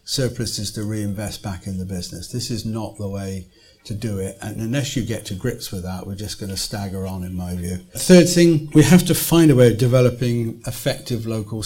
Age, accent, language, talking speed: 50-69, British, English, 230 wpm